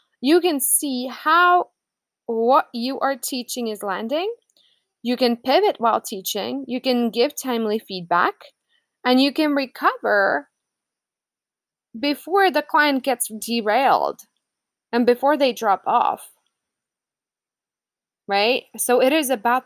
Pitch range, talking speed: 230-305 Hz, 120 wpm